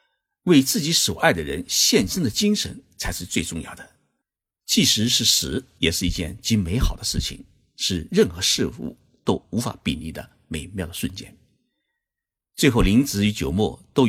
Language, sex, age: Chinese, male, 50-69